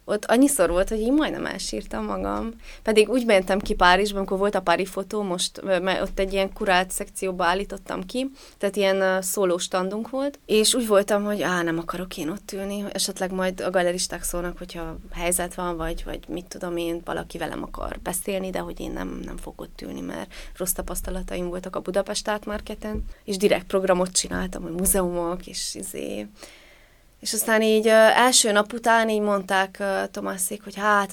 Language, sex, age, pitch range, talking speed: Hungarian, female, 20-39, 180-210 Hz, 180 wpm